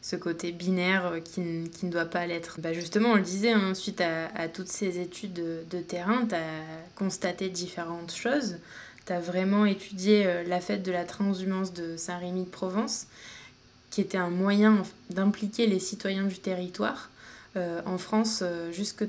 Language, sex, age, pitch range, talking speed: French, female, 20-39, 180-210 Hz, 170 wpm